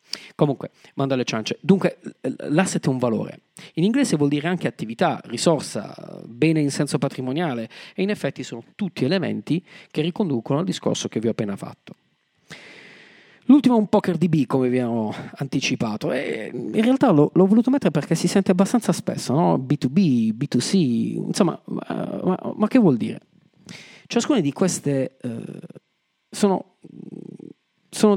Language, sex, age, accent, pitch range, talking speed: Italian, male, 40-59, native, 135-195 Hz, 155 wpm